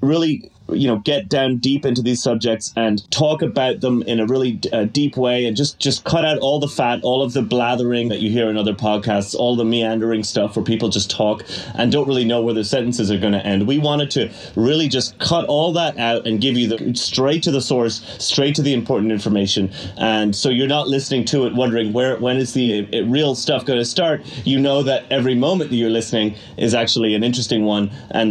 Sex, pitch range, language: male, 110-135 Hz, English